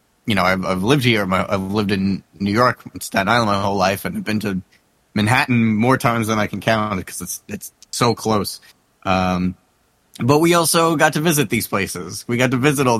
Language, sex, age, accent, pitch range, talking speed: English, male, 30-49, American, 100-130 Hz, 210 wpm